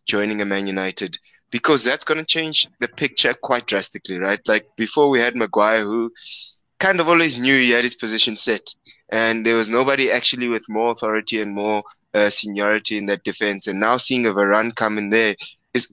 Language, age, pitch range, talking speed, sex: English, 20-39, 100-115 Hz, 200 wpm, male